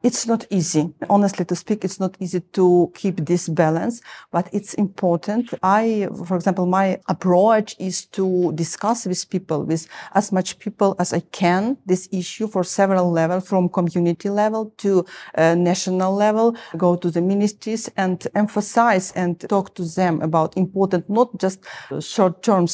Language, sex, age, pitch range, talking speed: English, female, 40-59, 175-210 Hz, 160 wpm